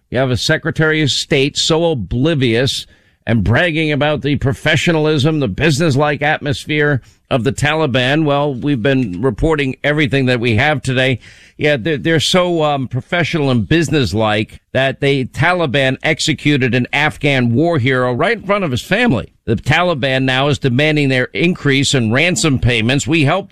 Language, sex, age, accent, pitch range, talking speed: English, male, 50-69, American, 130-160 Hz, 155 wpm